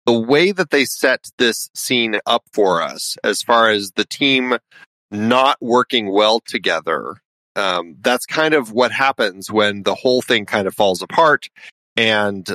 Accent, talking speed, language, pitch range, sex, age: American, 165 wpm, English, 105-130 Hz, male, 30-49